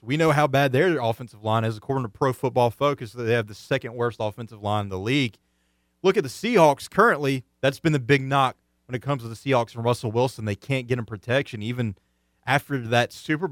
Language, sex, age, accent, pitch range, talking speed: English, male, 30-49, American, 105-135 Hz, 220 wpm